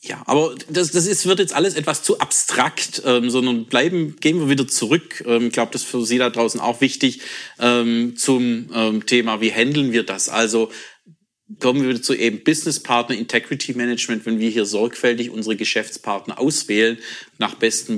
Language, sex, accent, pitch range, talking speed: German, male, German, 110-130 Hz, 185 wpm